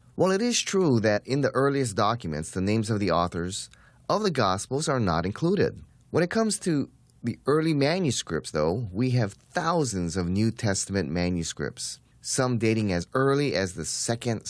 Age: 30-49